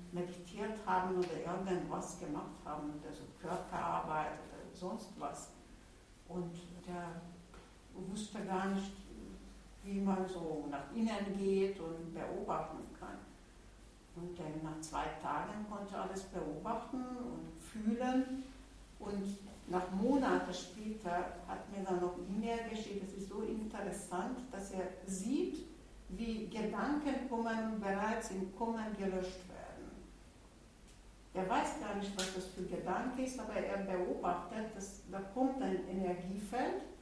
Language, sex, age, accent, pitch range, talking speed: German, female, 60-79, German, 185-230 Hz, 125 wpm